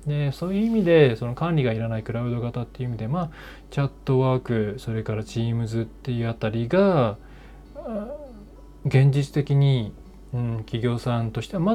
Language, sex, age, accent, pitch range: Japanese, male, 20-39, native, 115-175 Hz